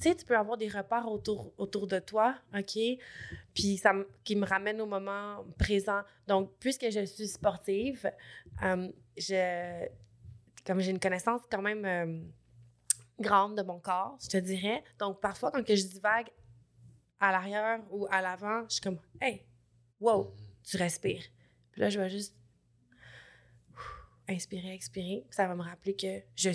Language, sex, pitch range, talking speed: French, female, 175-200 Hz, 165 wpm